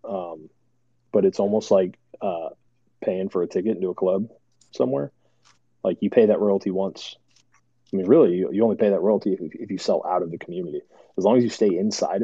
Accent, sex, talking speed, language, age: American, male, 210 wpm, English, 20-39